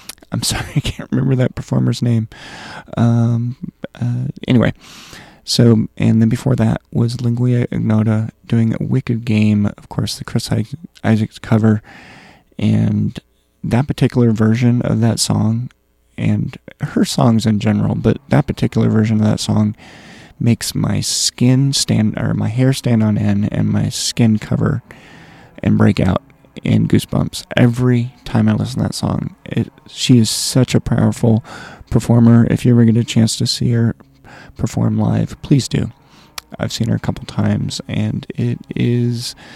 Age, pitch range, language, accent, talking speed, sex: 30-49, 110-125 Hz, English, American, 155 wpm, male